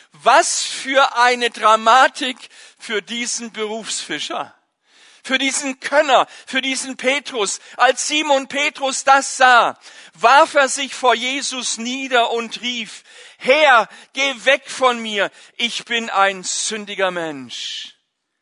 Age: 50-69